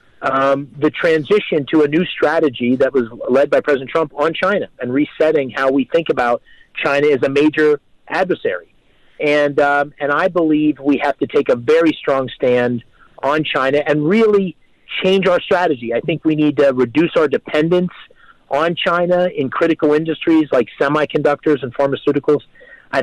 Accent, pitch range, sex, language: American, 140-175 Hz, male, English